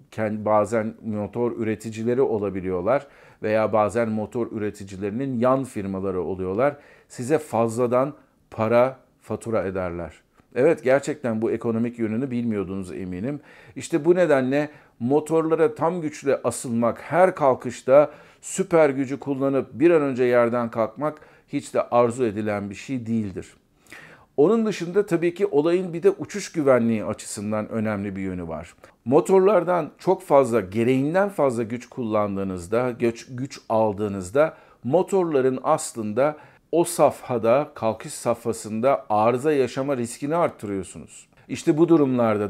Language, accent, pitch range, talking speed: Turkish, native, 110-150 Hz, 115 wpm